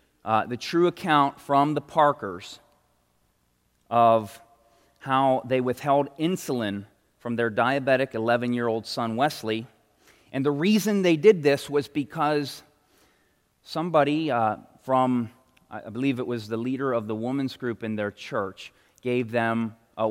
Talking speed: 135 wpm